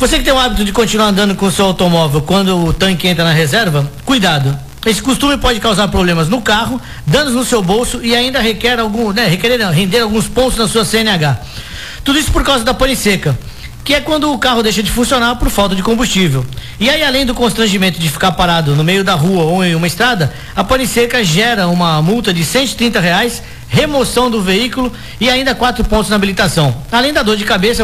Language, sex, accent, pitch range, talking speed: Portuguese, male, Brazilian, 175-240 Hz, 215 wpm